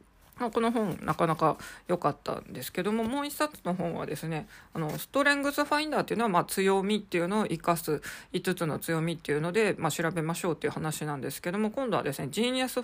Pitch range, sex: 165-220 Hz, female